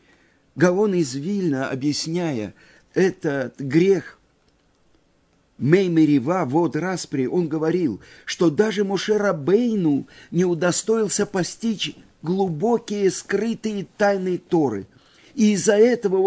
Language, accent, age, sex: Russian, native, 50-69, male